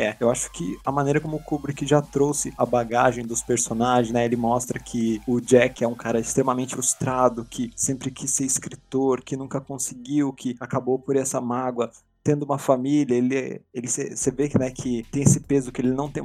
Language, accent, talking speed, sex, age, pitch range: Portuguese, Brazilian, 205 wpm, male, 20-39, 125-145 Hz